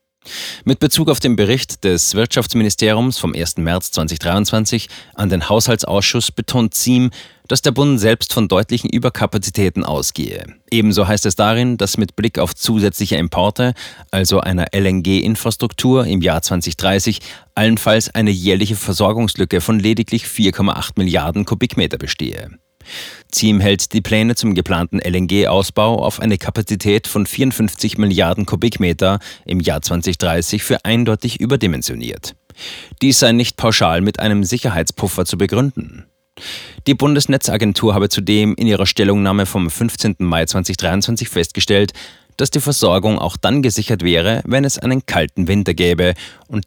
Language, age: German, 30-49